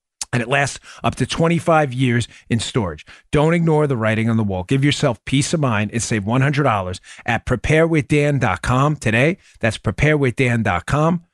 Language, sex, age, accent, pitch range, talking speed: English, male, 40-59, American, 115-150 Hz, 155 wpm